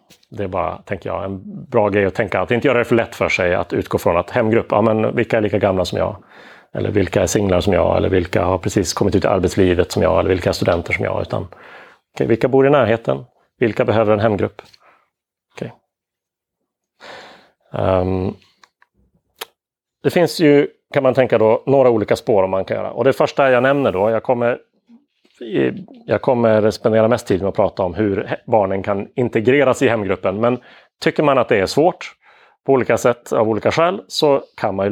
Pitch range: 95-130 Hz